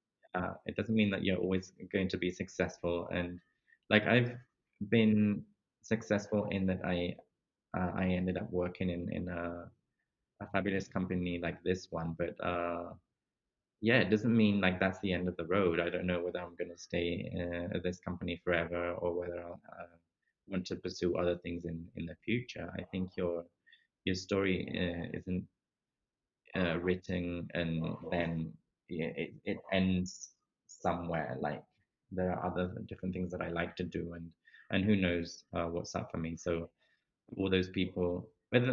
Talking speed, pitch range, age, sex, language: 175 wpm, 85-100 Hz, 20-39, male, English